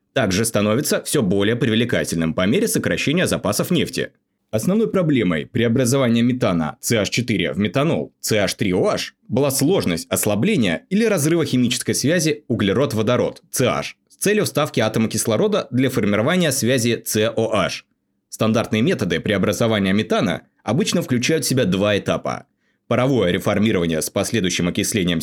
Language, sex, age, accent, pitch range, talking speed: Russian, male, 20-39, native, 105-145 Hz, 120 wpm